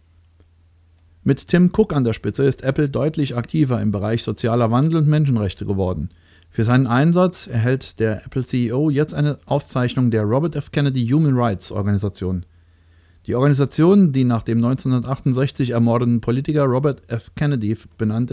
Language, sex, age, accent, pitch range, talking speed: German, male, 40-59, German, 105-140 Hz, 145 wpm